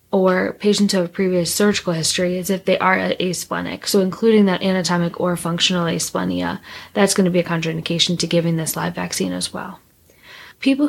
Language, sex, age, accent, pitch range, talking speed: English, female, 10-29, American, 175-210 Hz, 180 wpm